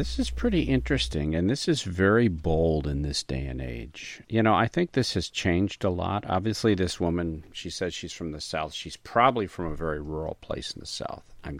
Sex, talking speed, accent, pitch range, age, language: male, 220 wpm, American, 75-100 Hz, 50-69, English